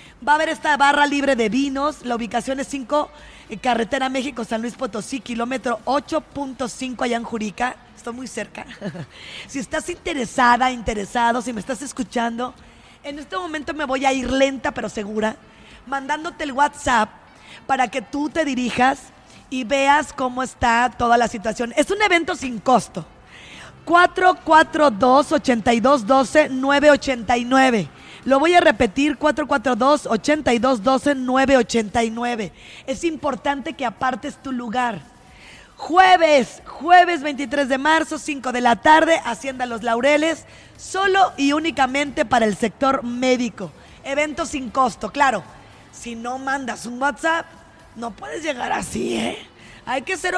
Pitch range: 240-300 Hz